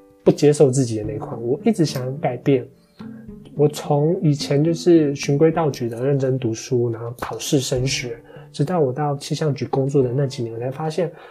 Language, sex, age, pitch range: Chinese, male, 20-39, 130-170 Hz